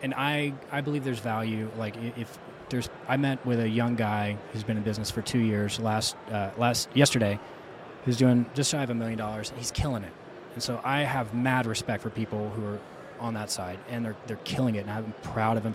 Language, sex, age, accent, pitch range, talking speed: English, male, 20-39, American, 105-125 Hz, 230 wpm